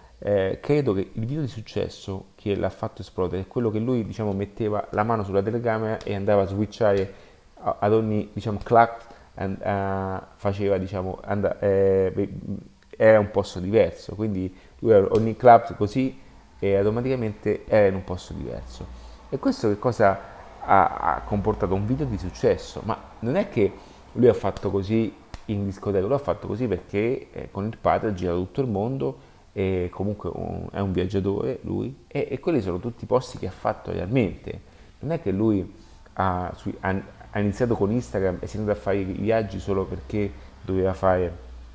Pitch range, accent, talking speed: 95-110 Hz, native, 180 wpm